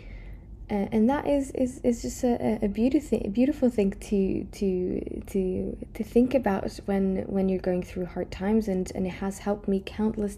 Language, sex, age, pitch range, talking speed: English, female, 20-39, 180-215 Hz, 180 wpm